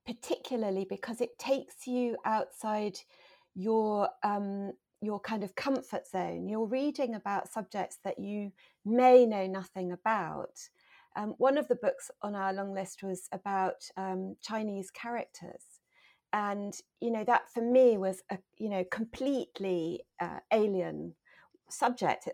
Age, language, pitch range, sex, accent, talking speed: 40-59, English, 190-255 Hz, female, British, 135 wpm